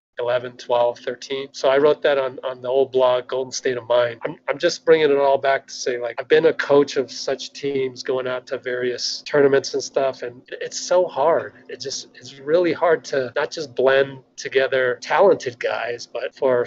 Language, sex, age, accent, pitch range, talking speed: English, male, 30-49, American, 130-195 Hz, 210 wpm